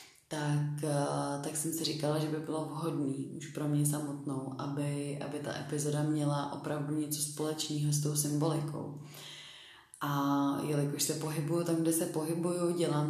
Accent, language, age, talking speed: native, Czech, 30-49, 150 wpm